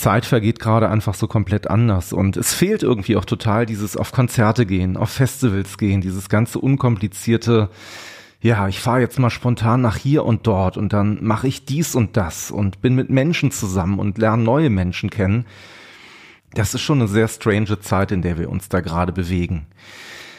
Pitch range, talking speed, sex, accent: 105-130 Hz, 190 wpm, male, German